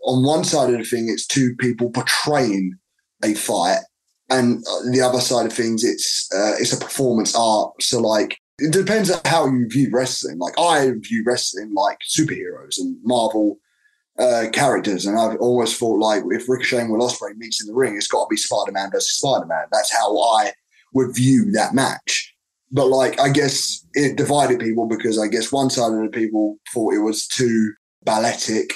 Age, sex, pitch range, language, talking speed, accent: 20-39, male, 120-170 Hz, English, 190 wpm, British